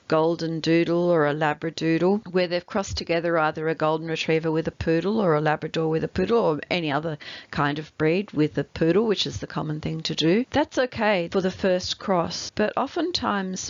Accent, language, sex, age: Australian, English, female, 40-59